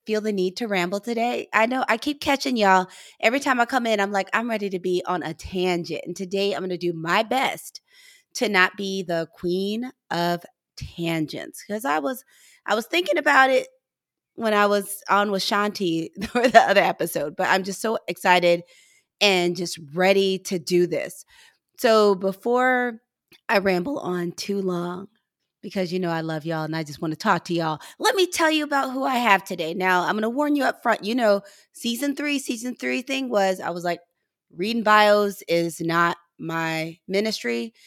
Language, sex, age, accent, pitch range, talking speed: English, female, 30-49, American, 170-230 Hz, 195 wpm